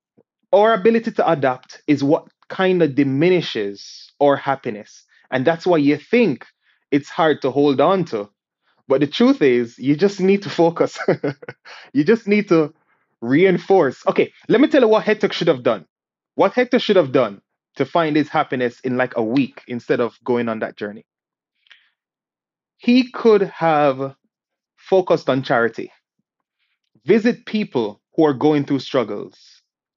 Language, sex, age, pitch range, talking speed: English, male, 20-39, 140-195 Hz, 155 wpm